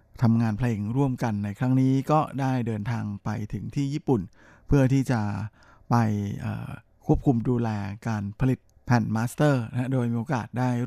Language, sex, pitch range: Thai, male, 110-130 Hz